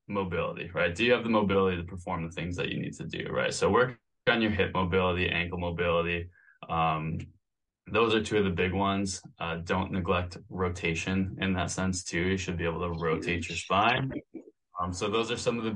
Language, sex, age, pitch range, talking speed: English, male, 20-39, 85-100 Hz, 215 wpm